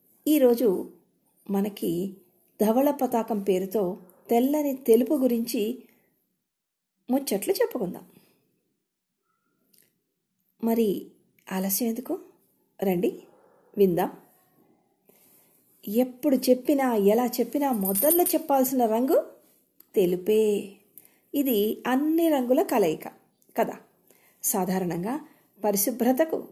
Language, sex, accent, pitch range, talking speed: Telugu, female, native, 210-275 Hz, 65 wpm